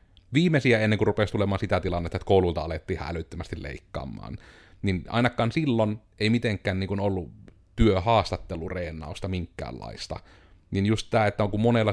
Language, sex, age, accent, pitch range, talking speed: Finnish, male, 30-49, native, 90-110 Hz, 135 wpm